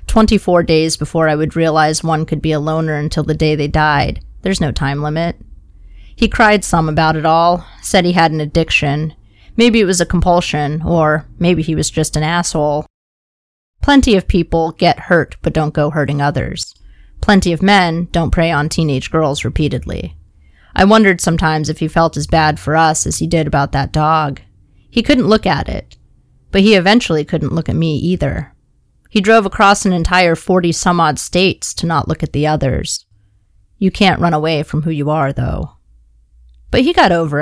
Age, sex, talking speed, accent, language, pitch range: 30-49, female, 190 wpm, American, English, 150-175 Hz